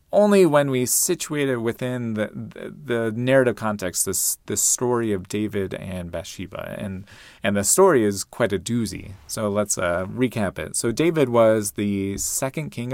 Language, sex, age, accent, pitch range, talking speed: English, male, 30-49, American, 100-130 Hz, 175 wpm